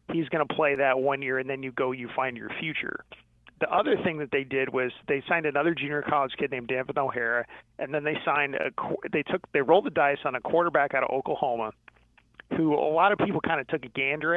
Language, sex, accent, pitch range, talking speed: English, male, American, 130-160 Hz, 235 wpm